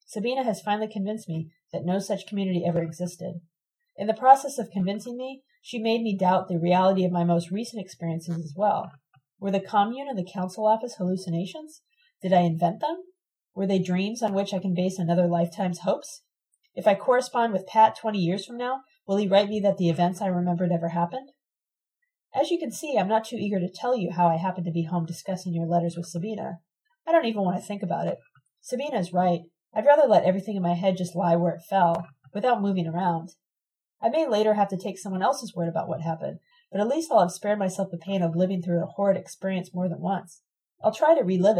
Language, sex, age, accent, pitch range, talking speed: English, female, 30-49, American, 175-220 Hz, 225 wpm